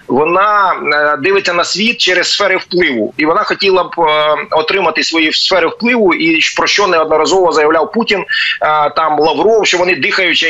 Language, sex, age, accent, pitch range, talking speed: Ukrainian, male, 30-49, native, 160-215 Hz, 150 wpm